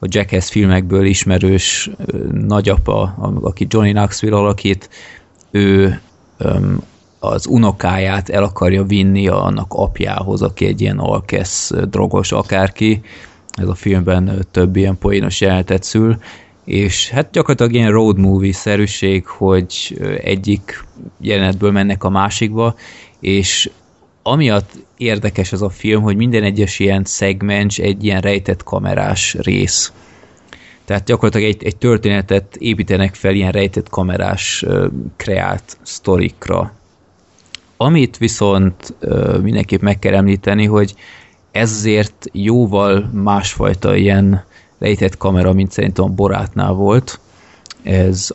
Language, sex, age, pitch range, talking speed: Hungarian, male, 20-39, 95-105 Hz, 115 wpm